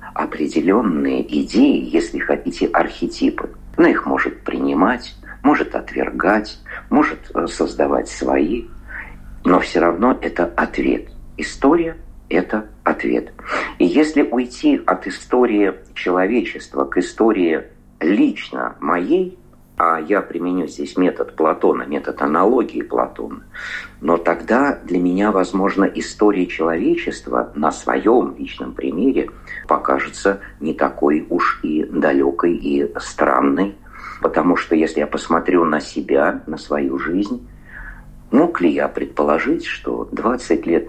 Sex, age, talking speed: male, 50-69, 115 wpm